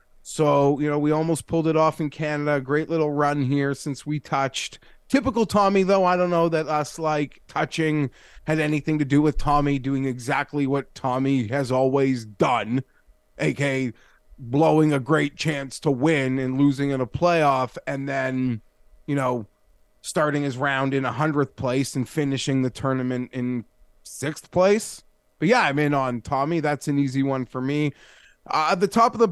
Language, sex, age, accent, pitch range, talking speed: English, male, 20-39, American, 130-160 Hz, 175 wpm